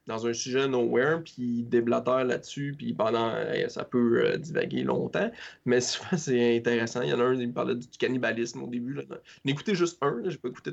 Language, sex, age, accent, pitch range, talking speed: French, male, 20-39, Canadian, 120-135 Hz, 200 wpm